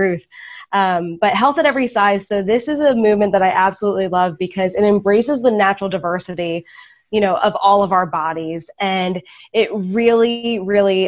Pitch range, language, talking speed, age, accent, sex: 180-215 Hz, English, 175 wpm, 20-39, American, female